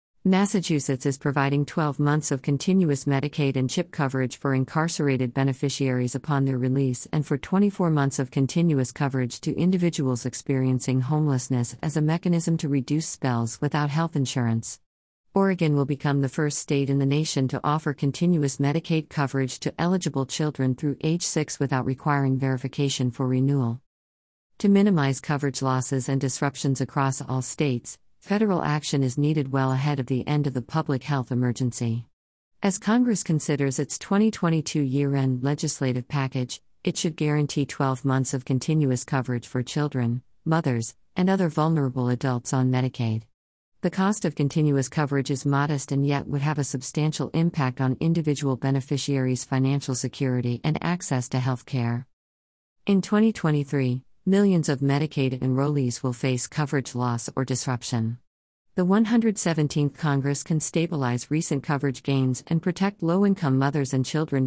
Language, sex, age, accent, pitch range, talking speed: English, female, 50-69, American, 130-155 Hz, 150 wpm